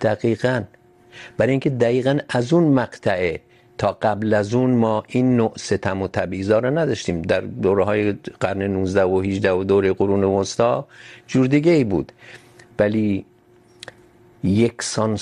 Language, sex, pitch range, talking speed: Urdu, male, 100-120 Hz, 140 wpm